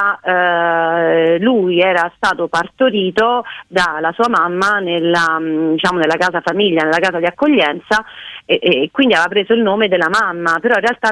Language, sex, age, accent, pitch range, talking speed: Italian, female, 30-49, native, 170-215 Hz, 140 wpm